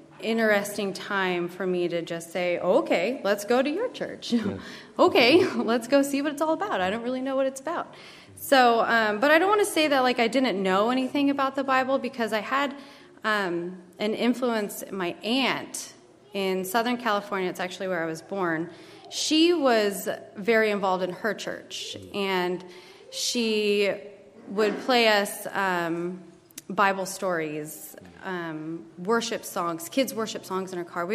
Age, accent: 30-49, American